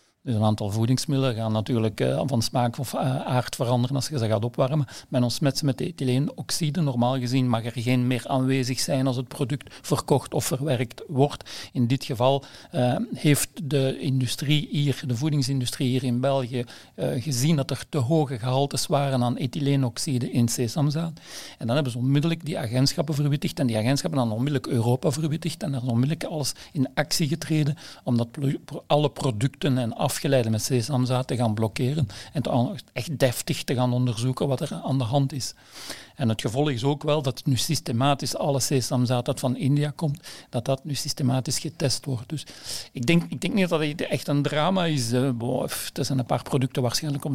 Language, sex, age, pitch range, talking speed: Dutch, male, 50-69, 125-145 Hz, 190 wpm